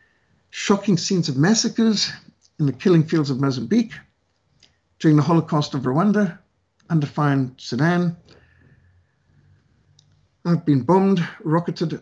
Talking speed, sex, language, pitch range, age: 105 wpm, male, English, 130-160 Hz, 50-69